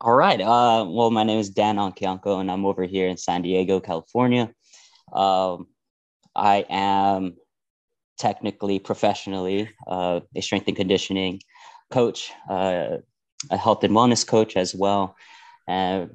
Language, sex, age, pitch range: English, male, 20-39, 95-110 Hz